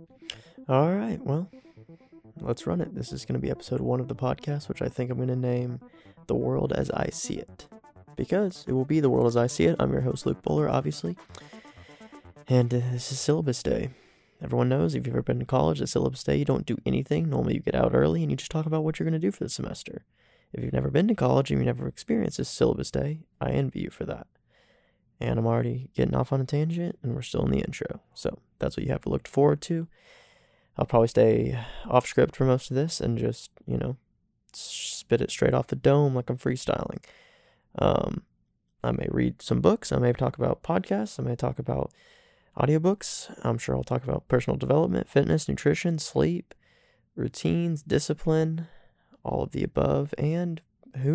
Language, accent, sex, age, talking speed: English, American, male, 20-39, 210 wpm